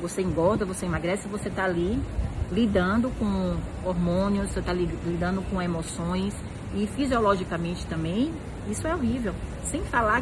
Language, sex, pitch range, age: Portuguese, female, 160-215 Hz, 40-59